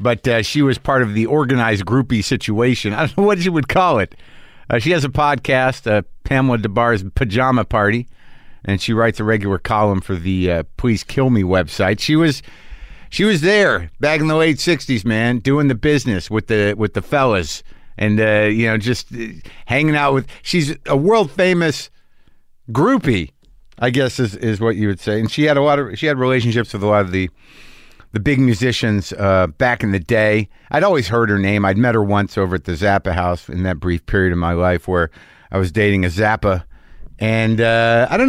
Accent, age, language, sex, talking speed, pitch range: American, 50-69, English, male, 210 wpm, 105-135 Hz